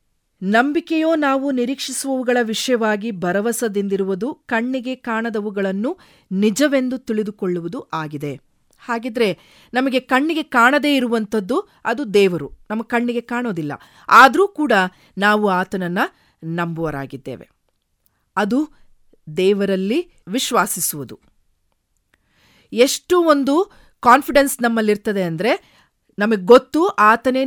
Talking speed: 75 wpm